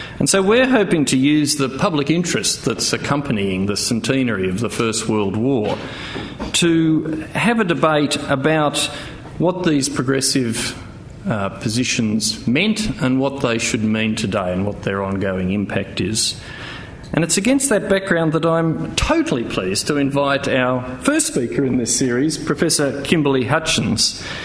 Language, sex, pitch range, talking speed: English, male, 115-145 Hz, 150 wpm